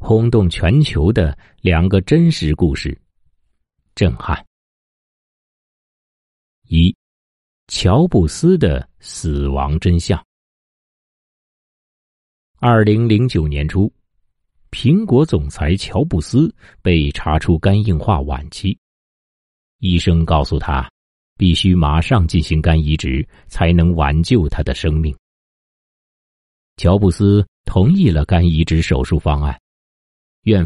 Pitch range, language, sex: 75-100 Hz, Chinese, male